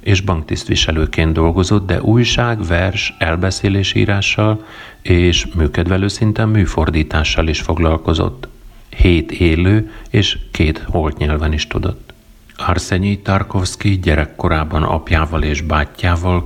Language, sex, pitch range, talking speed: Hungarian, male, 80-100 Hz, 100 wpm